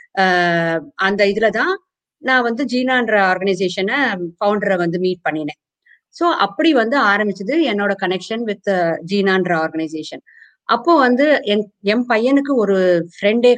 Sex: female